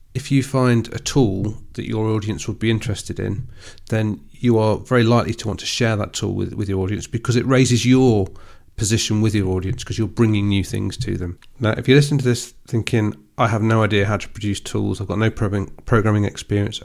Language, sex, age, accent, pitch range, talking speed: English, male, 40-59, British, 100-120 Hz, 220 wpm